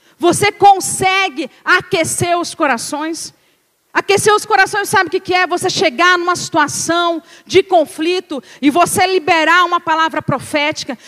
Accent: Brazilian